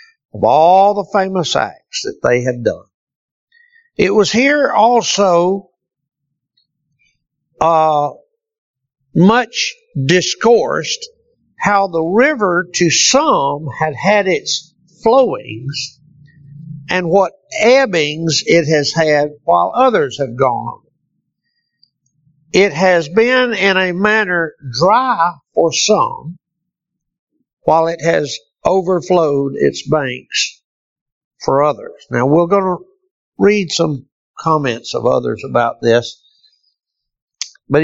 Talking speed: 100 wpm